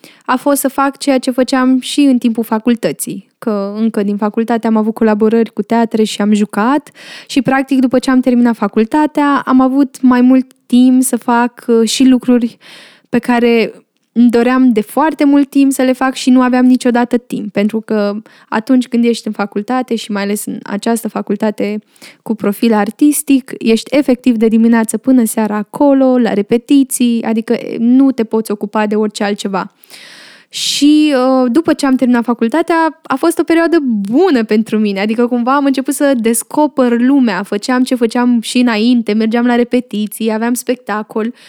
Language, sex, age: Romanian, female, 10-29